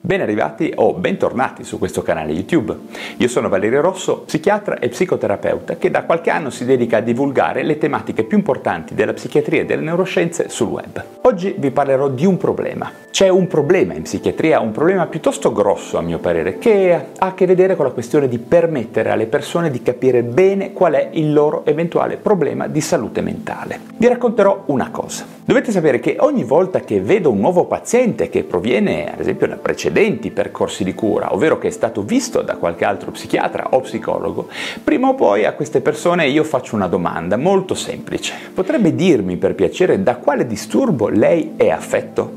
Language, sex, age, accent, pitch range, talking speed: Italian, male, 40-59, native, 150-220 Hz, 185 wpm